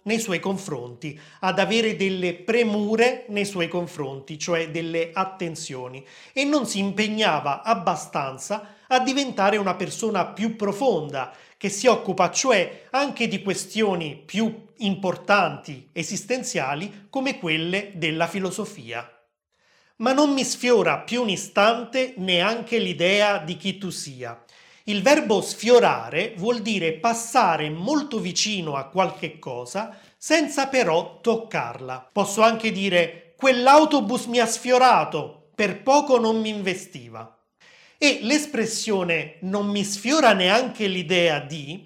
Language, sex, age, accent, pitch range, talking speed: Italian, male, 30-49, native, 170-230 Hz, 120 wpm